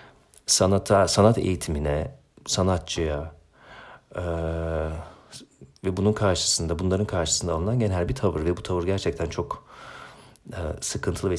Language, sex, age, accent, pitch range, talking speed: Turkish, male, 40-59, native, 80-100 Hz, 115 wpm